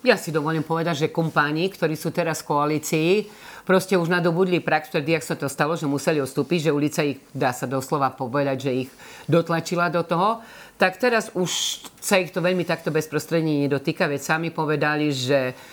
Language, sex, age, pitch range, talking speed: Slovak, female, 40-59, 150-190 Hz, 180 wpm